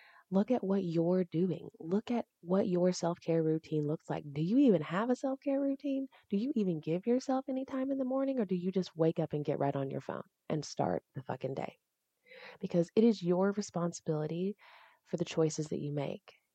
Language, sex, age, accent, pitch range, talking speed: English, female, 30-49, American, 160-210 Hz, 210 wpm